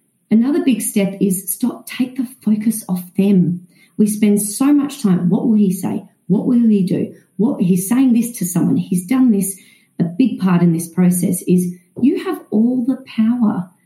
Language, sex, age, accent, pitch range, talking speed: English, female, 40-59, Australian, 180-245 Hz, 190 wpm